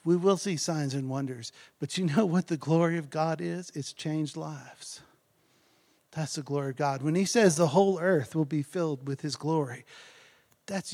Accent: American